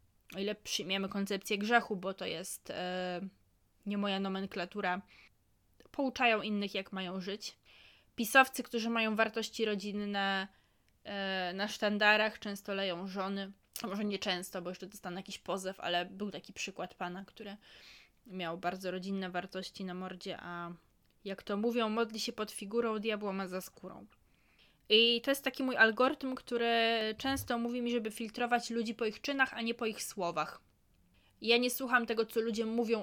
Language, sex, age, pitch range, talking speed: Polish, female, 20-39, 195-235 Hz, 160 wpm